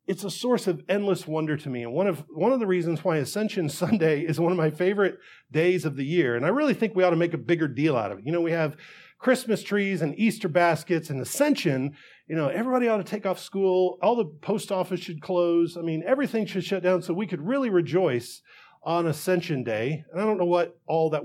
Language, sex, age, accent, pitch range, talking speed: English, male, 40-59, American, 160-215 Hz, 245 wpm